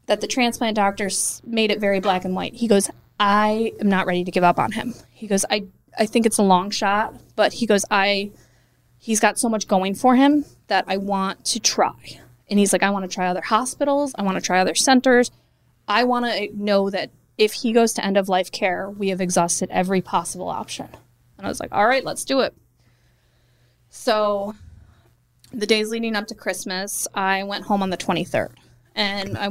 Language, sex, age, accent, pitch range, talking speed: English, female, 20-39, American, 180-220 Hz, 205 wpm